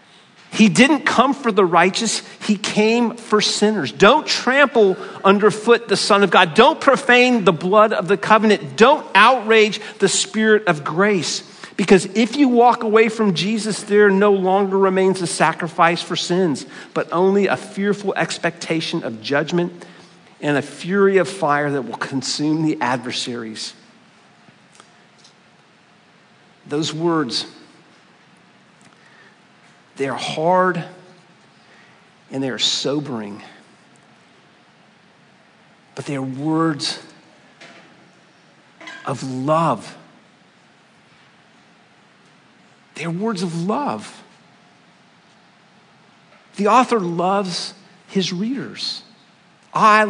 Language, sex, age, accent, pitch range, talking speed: English, male, 50-69, American, 165-215 Hz, 105 wpm